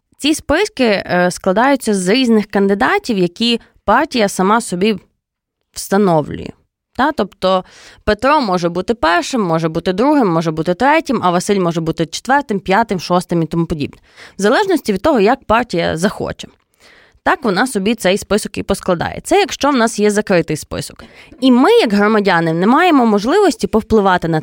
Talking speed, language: 150 wpm, Ukrainian